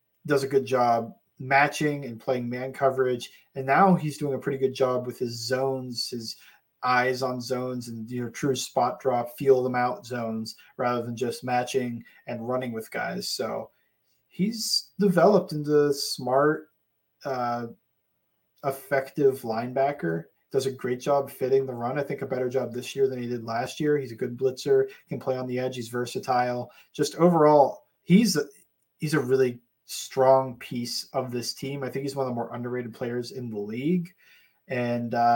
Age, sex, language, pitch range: 30-49, male, English, 125-145 Hz